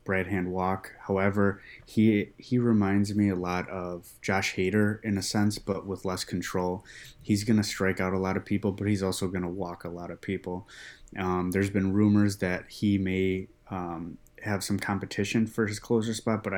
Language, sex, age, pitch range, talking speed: English, male, 20-39, 95-105 Hz, 200 wpm